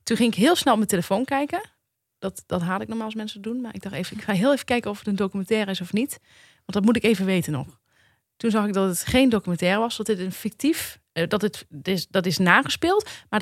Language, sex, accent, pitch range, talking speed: Dutch, female, Dutch, 180-225 Hz, 265 wpm